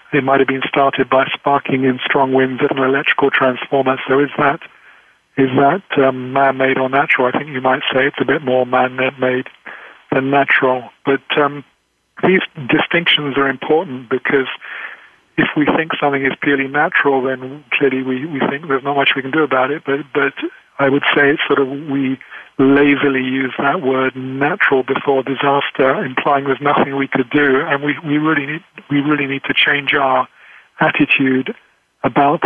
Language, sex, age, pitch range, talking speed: English, male, 50-69, 130-145 Hz, 180 wpm